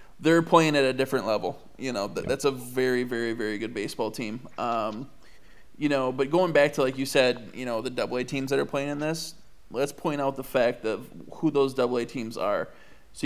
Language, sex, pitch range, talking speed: English, male, 125-140 Hz, 220 wpm